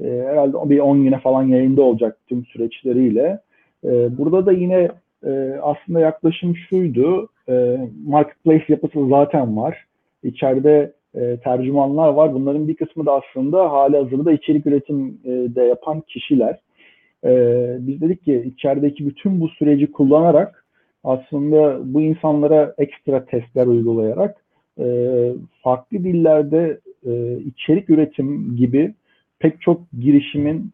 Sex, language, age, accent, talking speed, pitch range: male, Turkish, 50-69, native, 105 wpm, 130-155 Hz